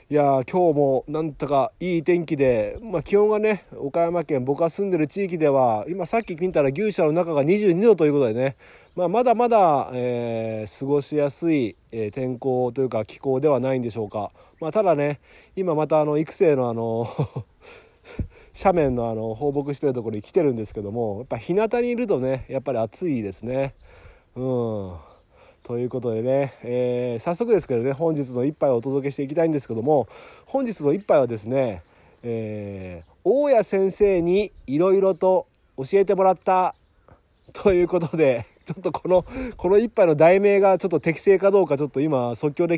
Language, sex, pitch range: Japanese, male, 120-185 Hz